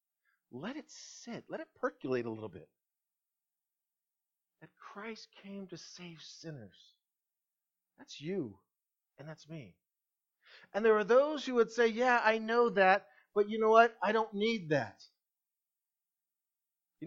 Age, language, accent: 40-59, English, American